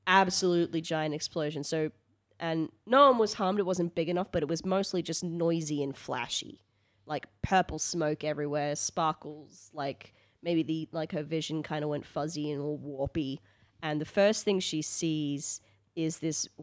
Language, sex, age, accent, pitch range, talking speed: English, female, 20-39, Australian, 145-170 Hz, 170 wpm